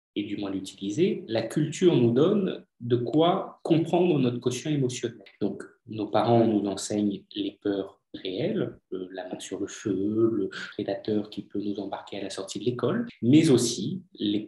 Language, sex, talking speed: French, male, 170 wpm